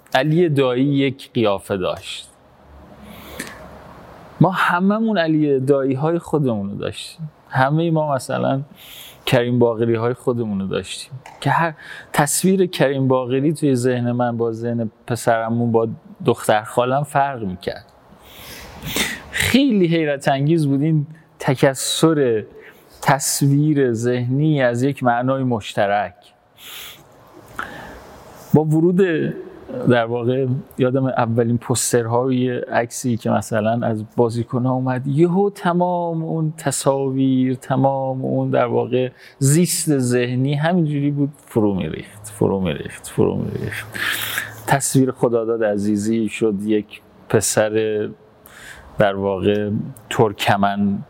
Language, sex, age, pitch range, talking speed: Persian, male, 30-49, 115-145 Hz, 105 wpm